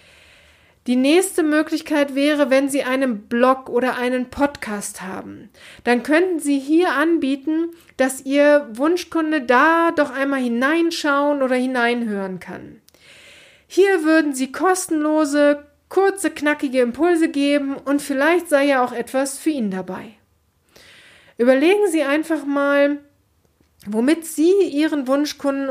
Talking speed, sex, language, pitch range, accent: 120 wpm, female, German, 230-300 Hz, German